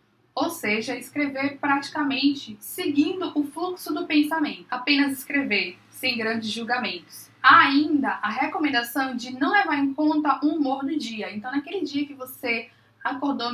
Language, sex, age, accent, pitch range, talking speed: Portuguese, female, 20-39, Brazilian, 230-290 Hz, 145 wpm